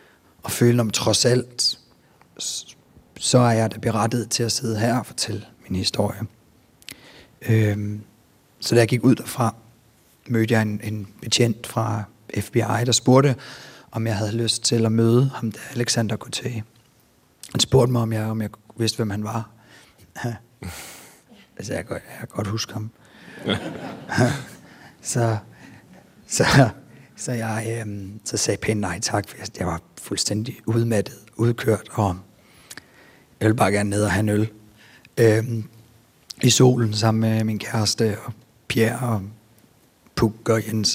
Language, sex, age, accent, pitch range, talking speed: Danish, male, 30-49, native, 110-120 Hz, 155 wpm